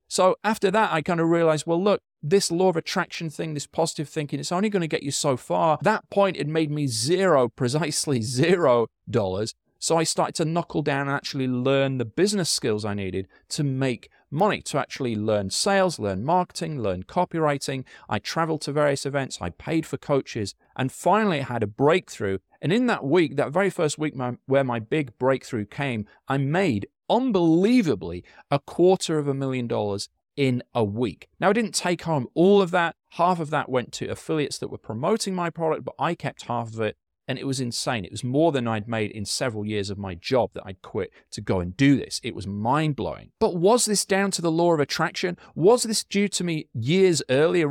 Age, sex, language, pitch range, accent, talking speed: 40-59, male, English, 125-175 Hz, British, 210 wpm